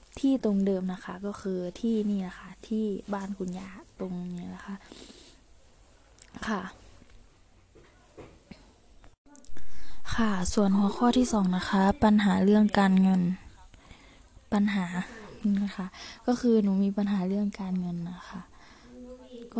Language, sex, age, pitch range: Thai, female, 20-39, 190-230 Hz